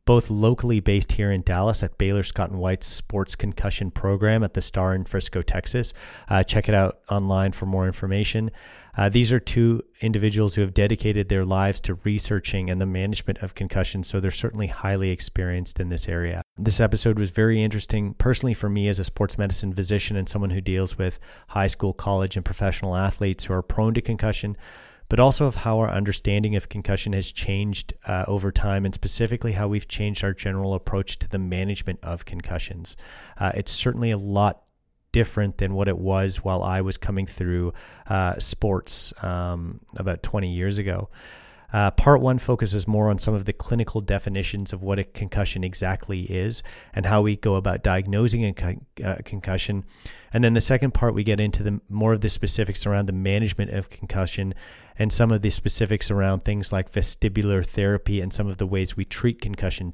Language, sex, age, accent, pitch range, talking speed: English, male, 30-49, American, 95-105 Hz, 190 wpm